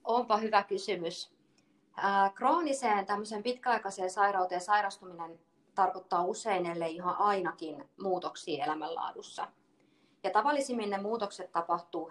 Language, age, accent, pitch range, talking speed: Finnish, 30-49, native, 175-205 Hz, 90 wpm